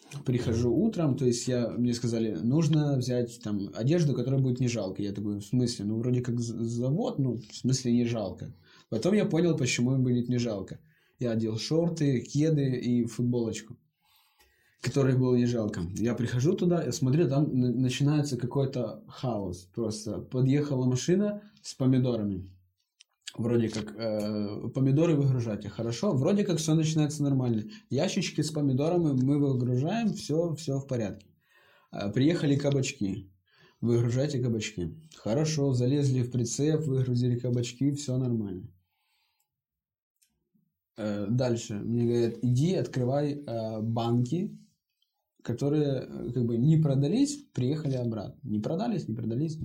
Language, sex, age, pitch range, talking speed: Russian, male, 20-39, 115-145 Hz, 130 wpm